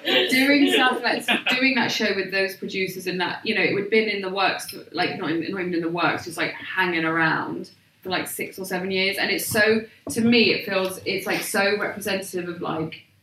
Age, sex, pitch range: 20-39, female, 175-200 Hz